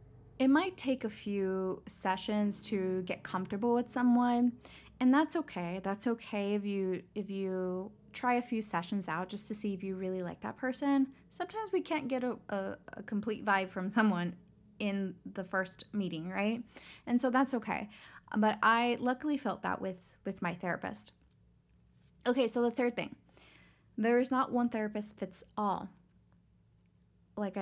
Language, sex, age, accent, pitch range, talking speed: English, female, 20-39, American, 190-240 Hz, 165 wpm